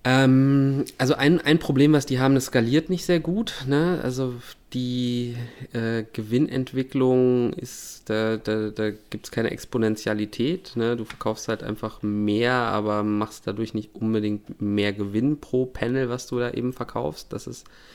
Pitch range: 100-120 Hz